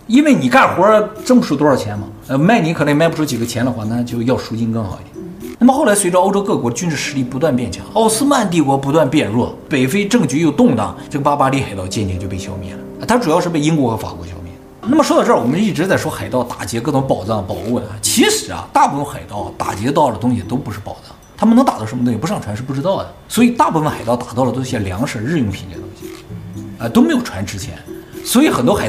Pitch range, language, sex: 110-180 Hz, Chinese, male